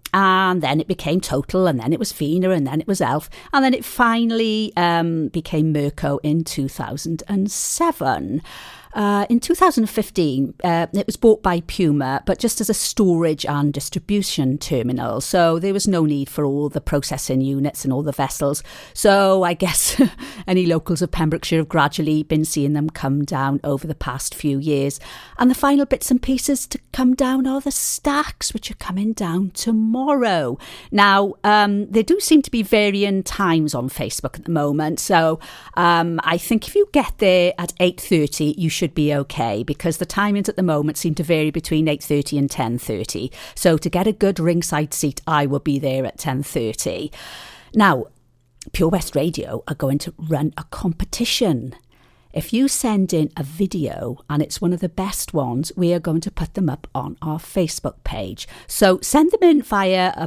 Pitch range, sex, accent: 150-200 Hz, female, British